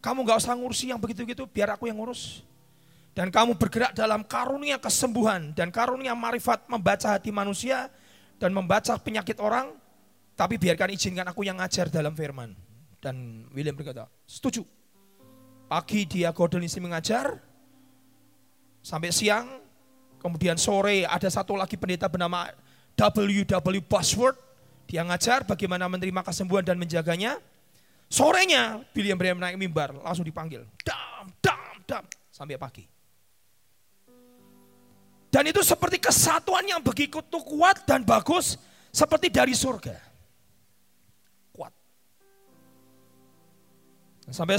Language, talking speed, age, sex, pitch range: Indonesian, 115 wpm, 30-49, male, 170-255 Hz